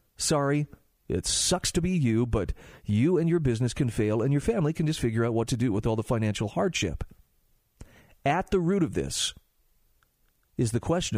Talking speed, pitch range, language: 195 wpm, 115-155 Hz, English